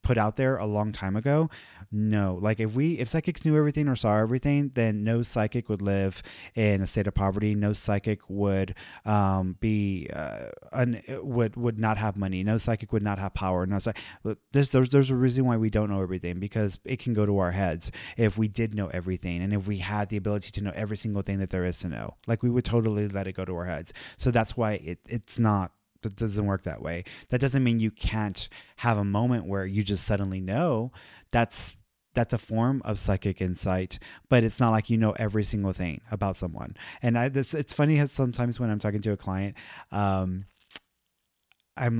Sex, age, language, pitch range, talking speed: male, 30-49, English, 95-115 Hz, 220 wpm